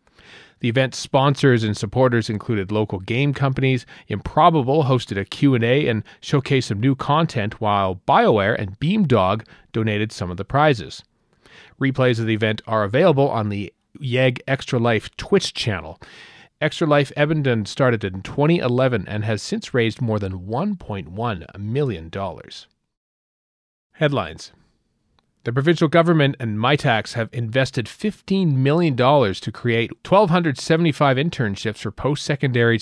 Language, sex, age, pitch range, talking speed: English, male, 40-59, 105-145 Hz, 130 wpm